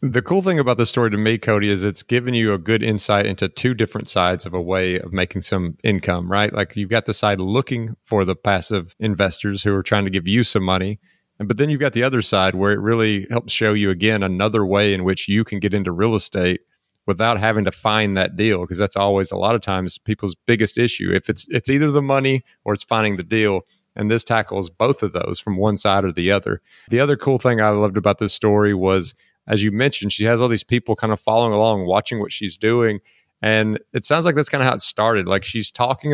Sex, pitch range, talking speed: male, 100-120 Hz, 245 wpm